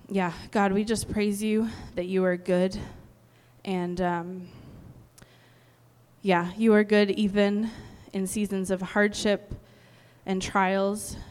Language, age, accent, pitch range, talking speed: English, 20-39, American, 190-210 Hz, 120 wpm